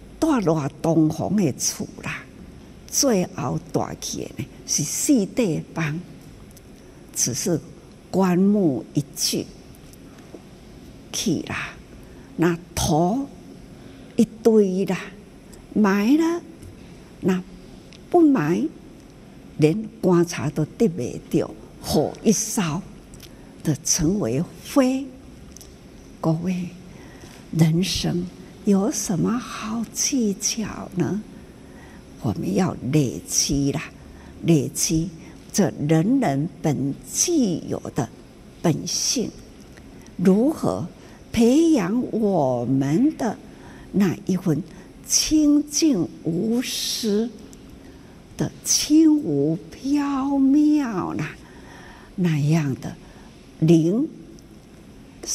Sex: female